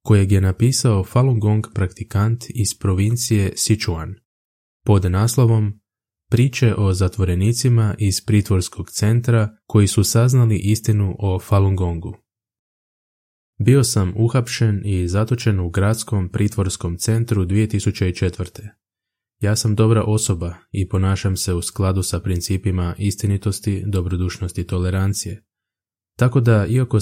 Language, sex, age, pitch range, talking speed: Croatian, male, 20-39, 95-110 Hz, 115 wpm